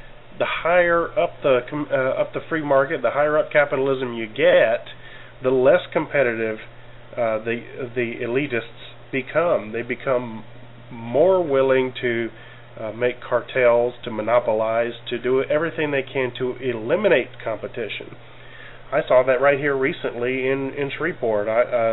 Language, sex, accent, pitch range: English, male, American, 115-135 Hz